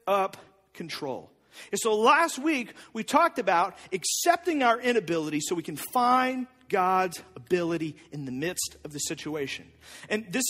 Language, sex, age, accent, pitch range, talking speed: English, male, 40-59, American, 170-230 Hz, 150 wpm